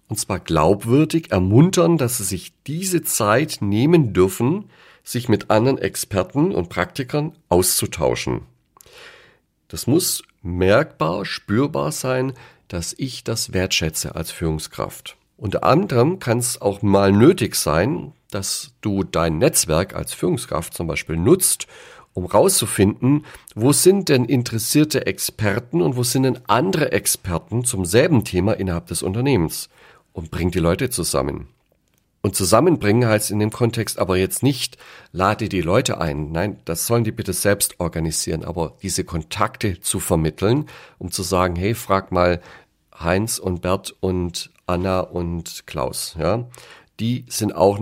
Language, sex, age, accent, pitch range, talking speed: German, male, 50-69, German, 90-120 Hz, 140 wpm